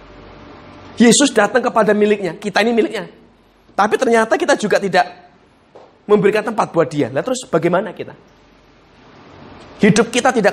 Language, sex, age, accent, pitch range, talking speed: Indonesian, male, 30-49, native, 205-275 Hz, 130 wpm